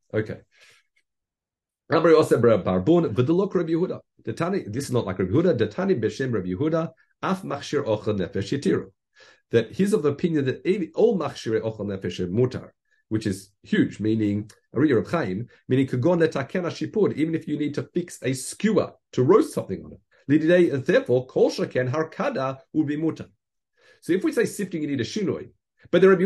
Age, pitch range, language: 50-69, 105-170 Hz, English